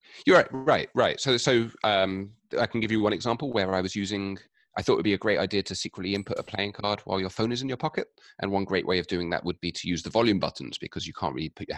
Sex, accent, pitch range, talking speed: male, British, 85-105 Hz, 295 wpm